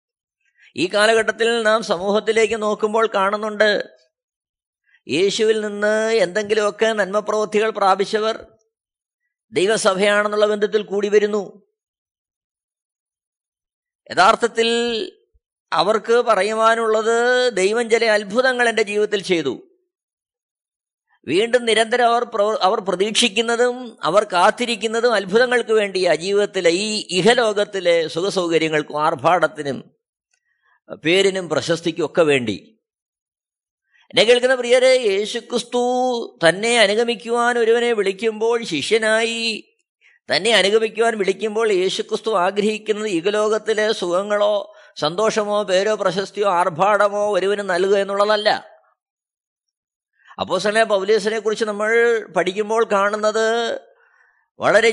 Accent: native